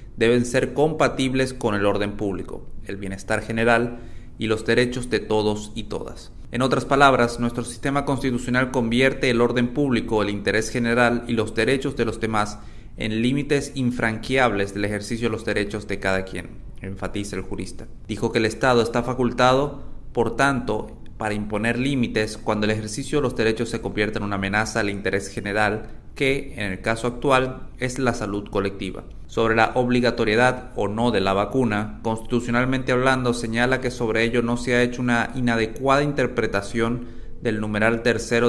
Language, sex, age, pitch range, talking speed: Spanish, male, 30-49, 105-125 Hz, 170 wpm